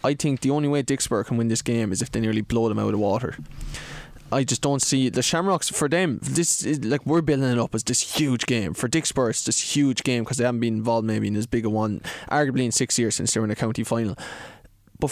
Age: 20-39